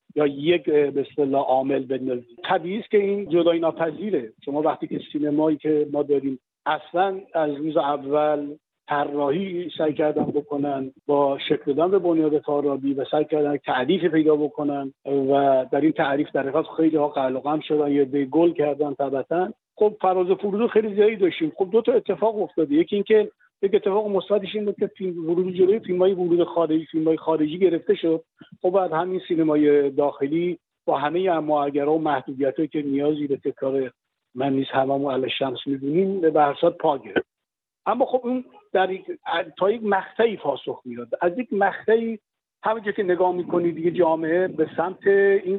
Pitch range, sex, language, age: 145-190 Hz, male, Persian, 50-69